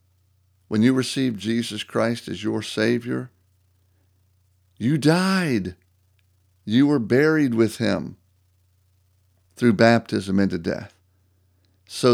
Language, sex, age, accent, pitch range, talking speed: English, male, 50-69, American, 90-115 Hz, 100 wpm